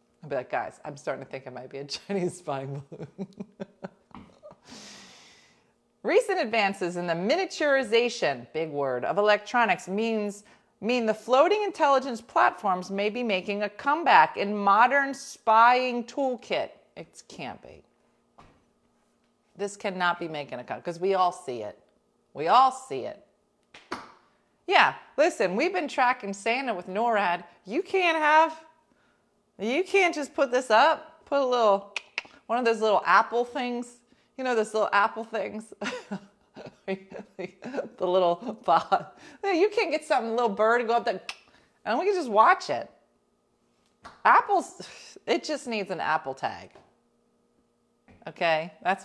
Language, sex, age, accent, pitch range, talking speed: English, female, 30-49, American, 185-265 Hz, 145 wpm